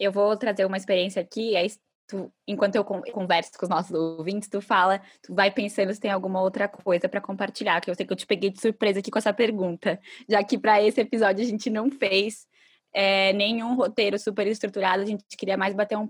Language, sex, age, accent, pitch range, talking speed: Portuguese, female, 10-29, Brazilian, 190-220 Hz, 230 wpm